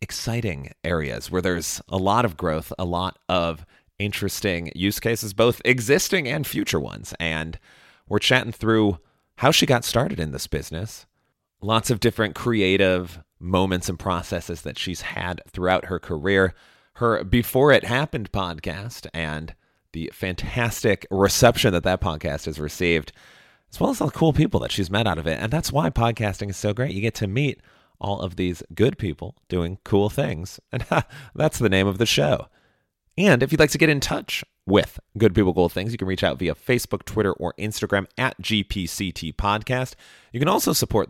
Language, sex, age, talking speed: English, male, 30-49, 180 wpm